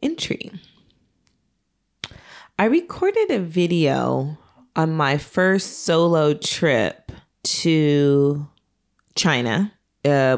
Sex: female